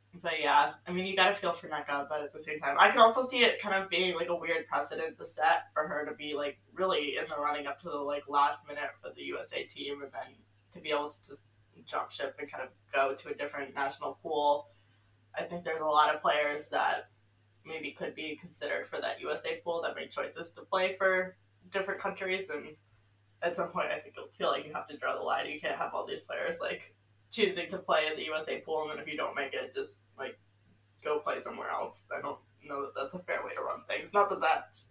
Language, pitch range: English, 135-185 Hz